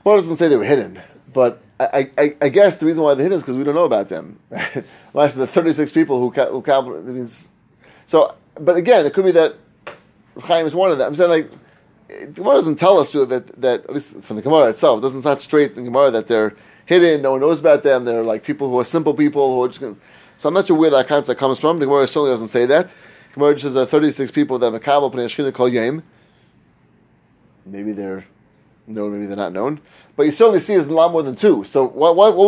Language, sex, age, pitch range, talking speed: English, male, 30-49, 130-180 Hz, 260 wpm